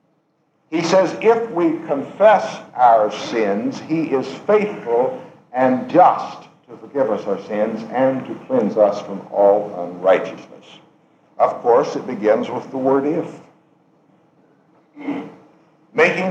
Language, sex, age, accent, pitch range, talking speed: English, male, 60-79, American, 150-175 Hz, 120 wpm